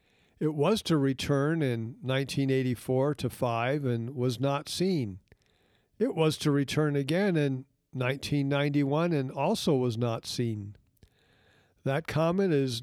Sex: male